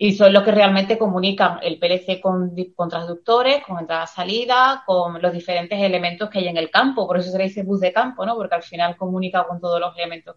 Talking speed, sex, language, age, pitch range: 235 wpm, female, Spanish, 30-49, 180-235 Hz